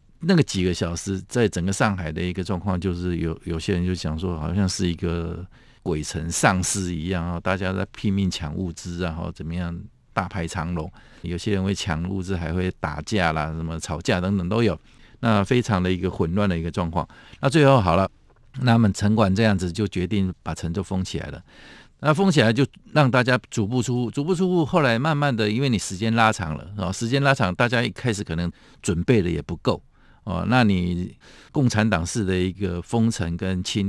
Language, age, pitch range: Chinese, 50-69, 85-115 Hz